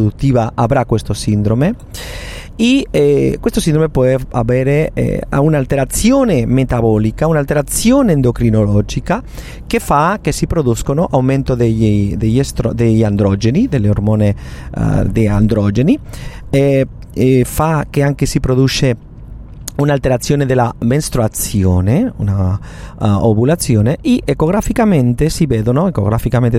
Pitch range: 110-140 Hz